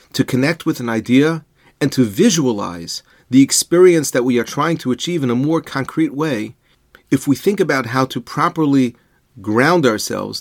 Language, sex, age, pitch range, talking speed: English, male, 40-59, 115-155 Hz, 175 wpm